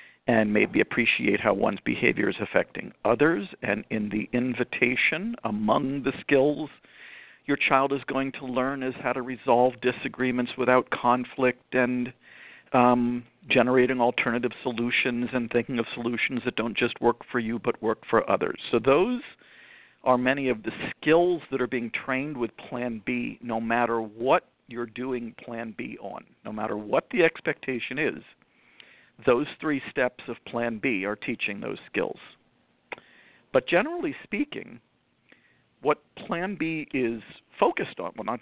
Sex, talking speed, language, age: male, 150 wpm, English, 50-69